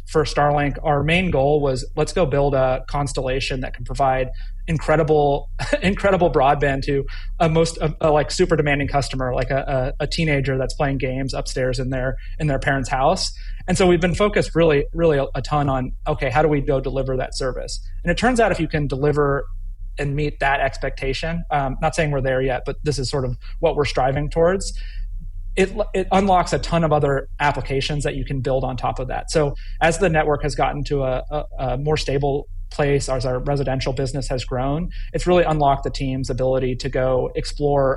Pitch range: 130-150 Hz